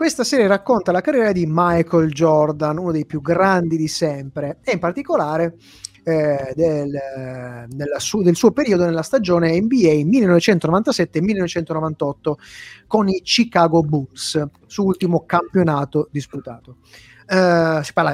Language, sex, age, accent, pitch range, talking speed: Italian, male, 30-49, native, 155-205 Hz, 120 wpm